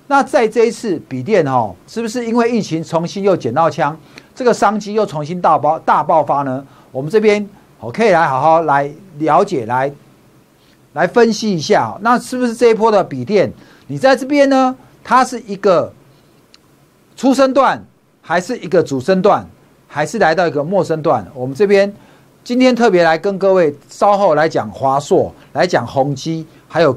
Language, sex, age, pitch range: Chinese, male, 50-69, 145-225 Hz